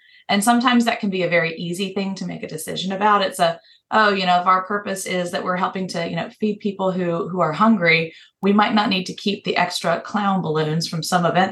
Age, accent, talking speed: 30-49, American, 250 wpm